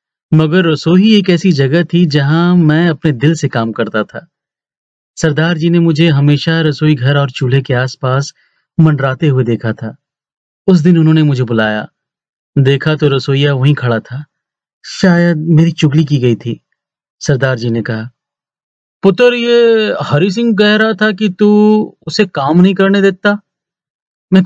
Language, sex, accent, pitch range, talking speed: Hindi, male, native, 140-190 Hz, 160 wpm